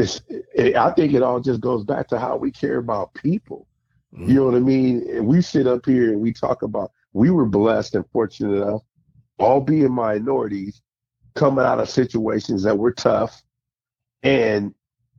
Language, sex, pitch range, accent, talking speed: English, male, 105-130 Hz, American, 170 wpm